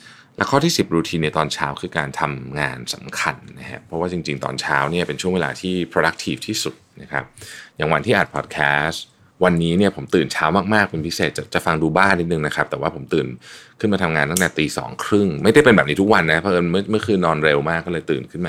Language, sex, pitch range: Thai, male, 75-95 Hz